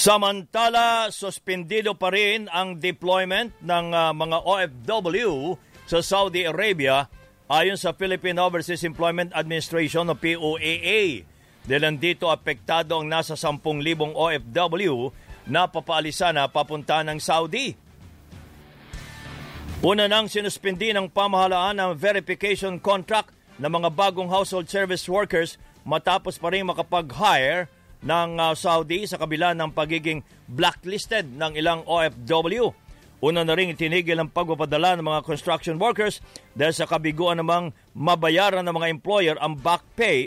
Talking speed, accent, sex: 120 wpm, Filipino, male